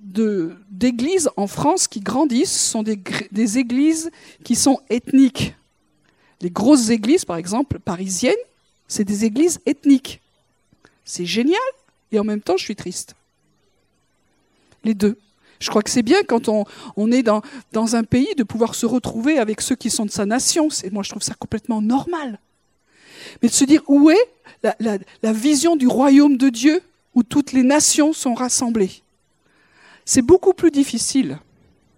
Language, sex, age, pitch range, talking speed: French, female, 50-69, 225-295 Hz, 165 wpm